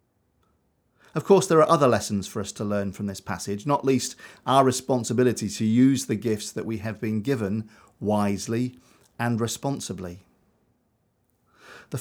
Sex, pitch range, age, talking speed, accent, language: male, 105-135 Hz, 40-59, 150 wpm, British, English